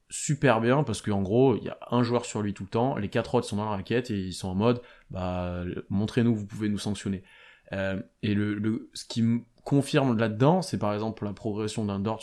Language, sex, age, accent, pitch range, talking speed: French, male, 20-39, French, 100-120 Hz, 240 wpm